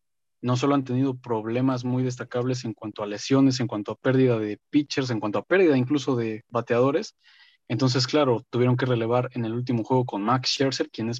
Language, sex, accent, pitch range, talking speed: Spanish, male, Mexican, 115-135 Hz, 205 wpm